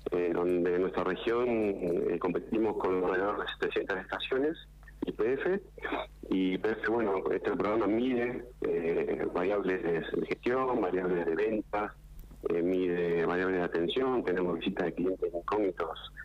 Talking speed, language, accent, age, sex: 135 wpm, Spanish, Argentinian, 40-59, male